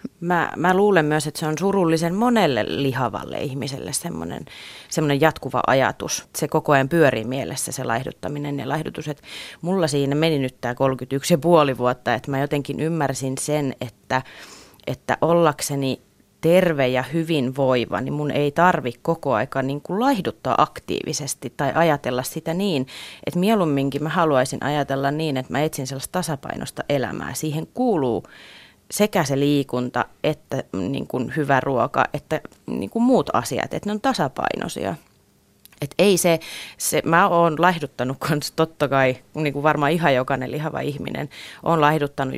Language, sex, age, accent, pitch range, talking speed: Finnish, female, 30-49, native, 135-165 Hz, 145 wpm